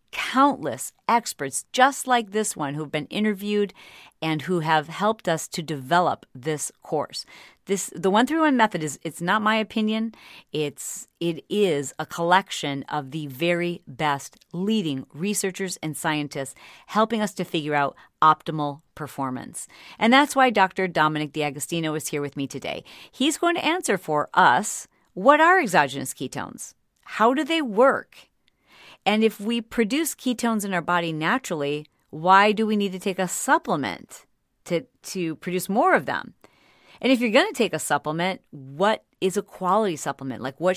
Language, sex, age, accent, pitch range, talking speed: English, female, 40-59, American, 155-220 Hz, 165 wpm